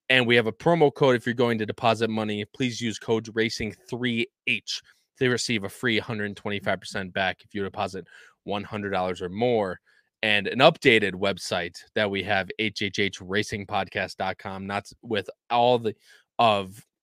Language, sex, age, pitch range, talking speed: English, male, 20-39, 100-125 Hz, 145 wpm